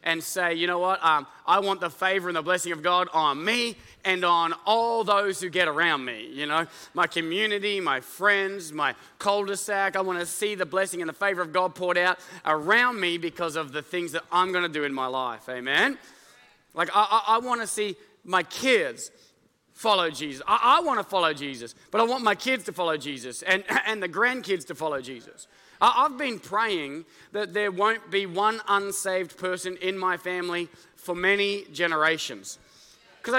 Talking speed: 200 wpm